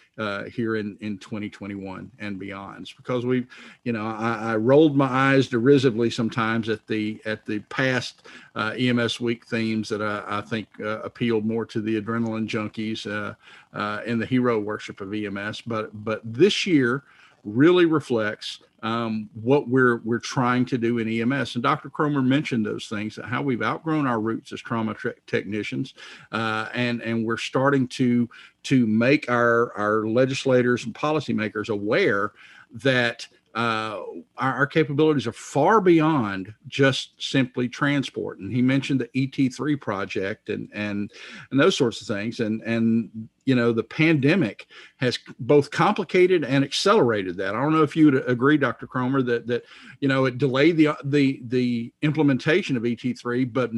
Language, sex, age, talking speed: English, male, 50-69, 165 wpm